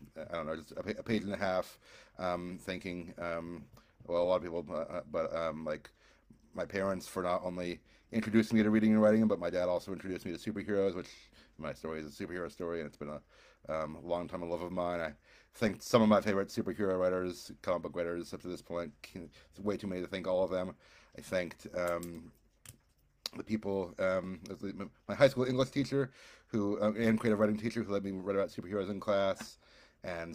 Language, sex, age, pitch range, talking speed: English, male, 40-59, 90-110 Hz, 215 wpm